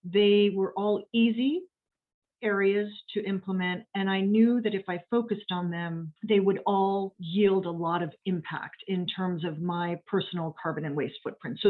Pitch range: 175-220 Hz